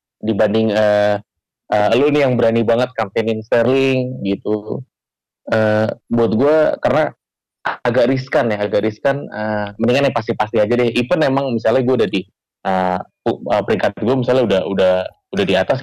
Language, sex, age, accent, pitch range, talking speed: Indonesian, male, 20-39, native, 105-120 Hz, 160 wpm